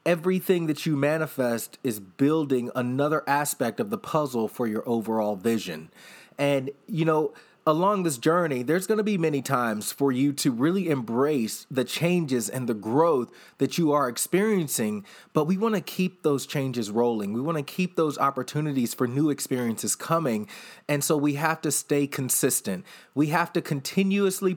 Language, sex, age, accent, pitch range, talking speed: English, male, 30-49, American, 130-170 Hz, 170 wpm